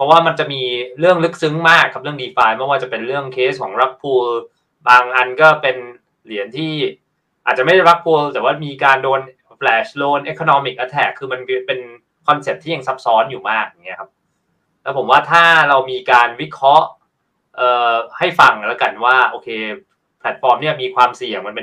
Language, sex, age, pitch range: Thai, male, 20-39, 125-175 Hz